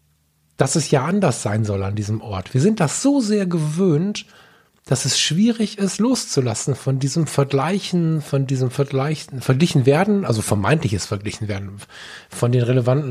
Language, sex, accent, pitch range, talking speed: German, male, German, 120-165 Hz, 160 wpm